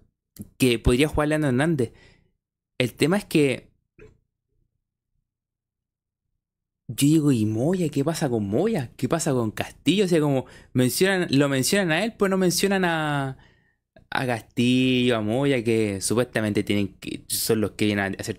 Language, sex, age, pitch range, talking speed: Spanish, male, 20-39, 110-160 Hz, 155 wpm